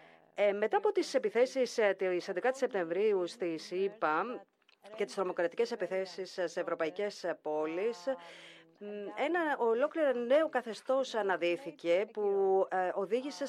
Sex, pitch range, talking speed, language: female, 175-235 Hz, 105 wpm, Greek